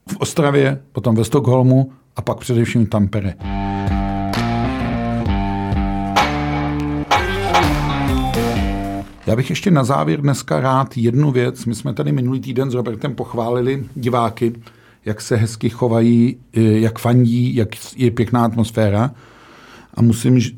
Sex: male